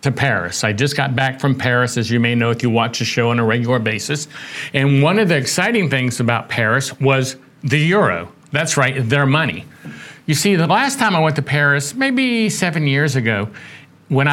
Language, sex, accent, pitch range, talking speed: English, male, American, 135-165 Hz, 210 wpm